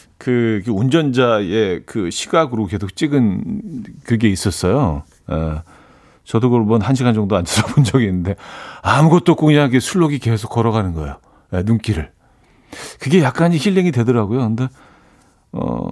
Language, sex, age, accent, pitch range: Korean, male, 40-59, native, 105-145 Hz